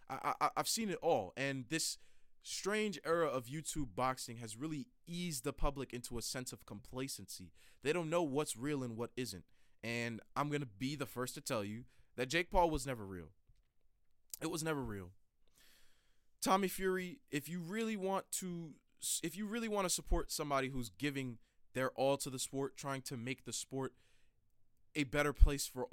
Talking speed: 185 wpm